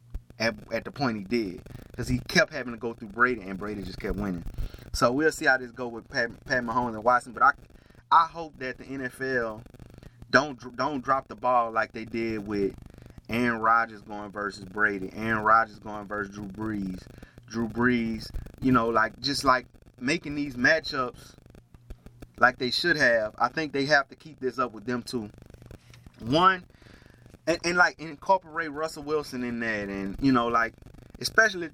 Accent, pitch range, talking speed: American, 110-140 Hz, 185 wpm